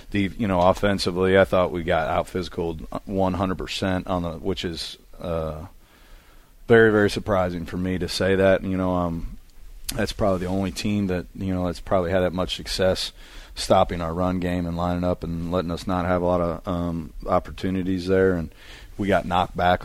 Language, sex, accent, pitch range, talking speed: English, male, American, 85-100 Hz, 195 wpm